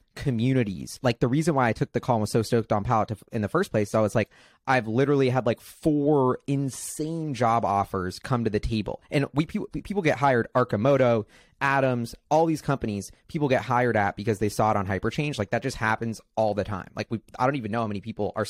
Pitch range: 105-130 Hz